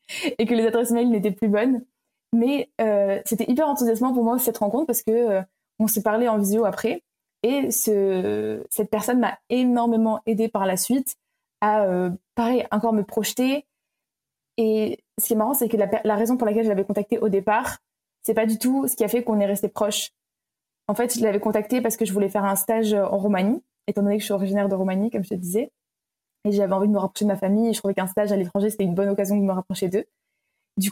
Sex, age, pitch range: female, 20-39, 200-235 Hz